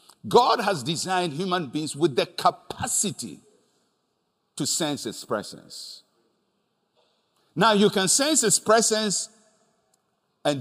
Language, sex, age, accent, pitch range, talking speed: English, male, 60-79, Nigerian, 155-225 Hz, 105 wpm